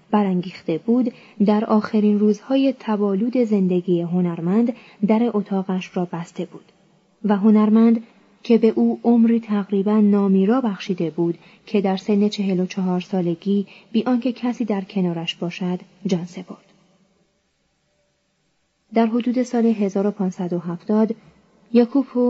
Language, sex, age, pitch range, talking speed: Persian, female, 20-39, 185-225 Hz, 110 wpm